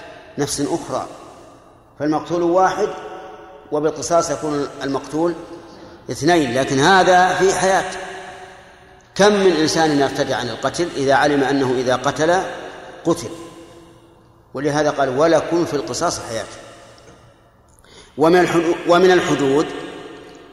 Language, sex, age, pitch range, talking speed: Arabic, male, 50-69, 140-170 Hz, 95 wpm